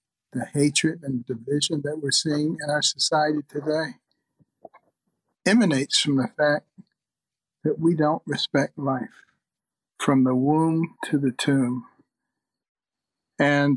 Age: 60-79